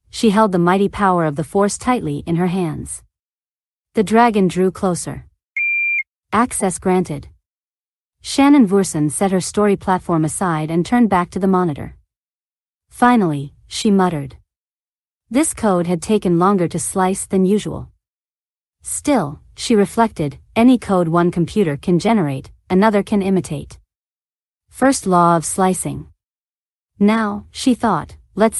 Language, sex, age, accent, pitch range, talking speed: English, female, 40-59, American, 150-210 Hz, 130 wpm